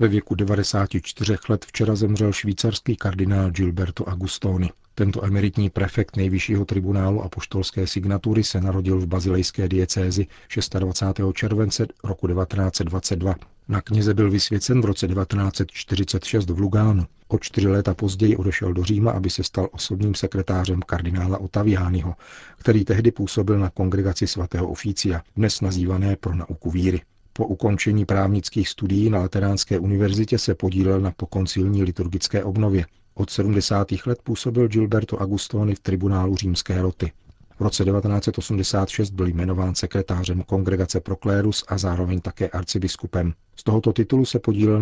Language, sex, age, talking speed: Czech, male, 40-59, 135 wpm